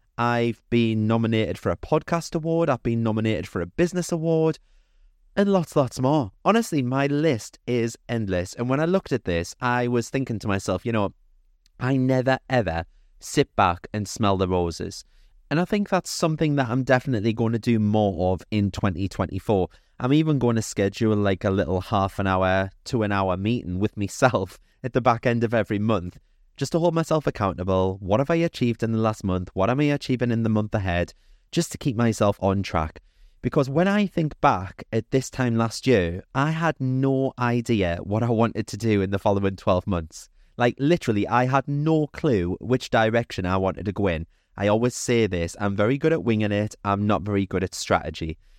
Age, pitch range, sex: 30-49, 95-140 Hz, male